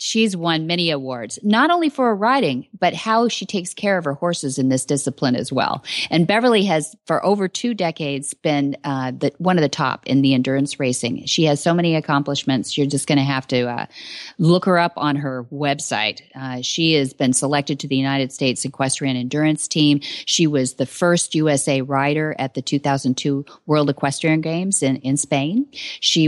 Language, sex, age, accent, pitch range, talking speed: English, female, 40-59, American, 140-185 Hz, 195 wpm